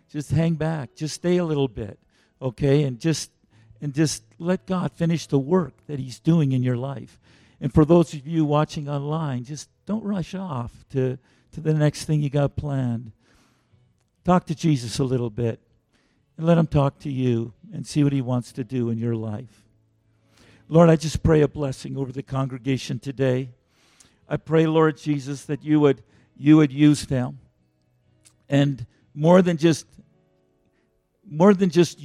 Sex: male